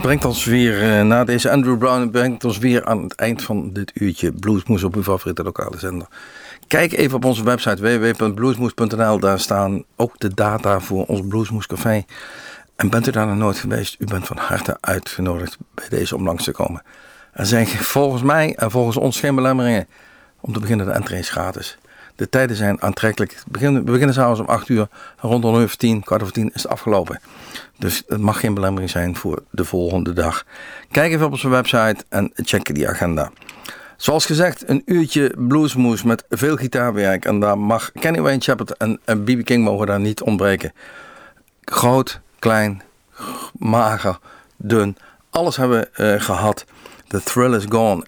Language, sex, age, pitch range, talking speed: Dutch, male, 50-69, 100-125 Hz, 175 wpm